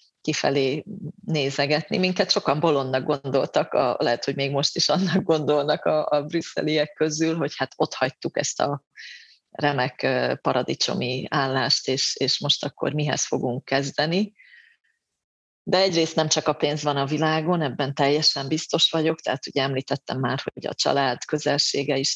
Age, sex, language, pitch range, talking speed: 30-49, female, Hungarian, 135-170 Hz, 150 wpm